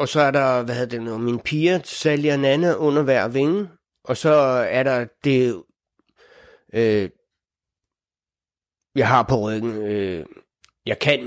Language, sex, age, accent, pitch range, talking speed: Danish, male, 60-79, native, 125-150 Hz, 150 wpm